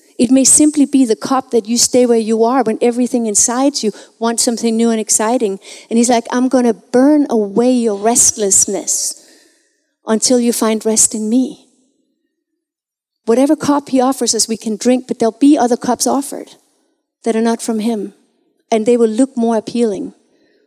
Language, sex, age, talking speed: English, female, 40-59, 180 wpm